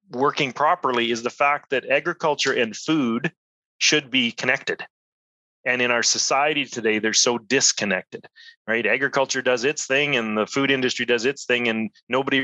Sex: male